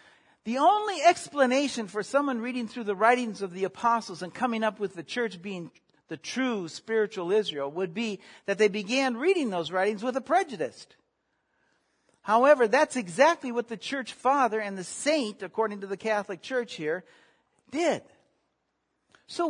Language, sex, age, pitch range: English, male, 60-79, 215-280 Hz